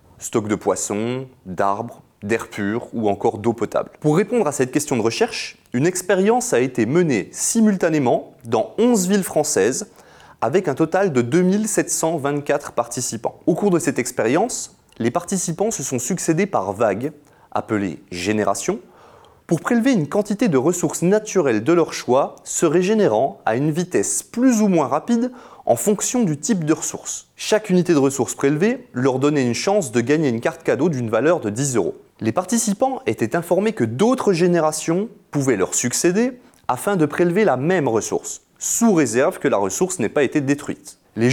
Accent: French